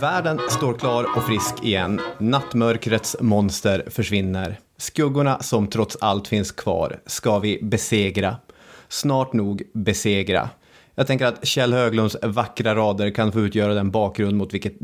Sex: male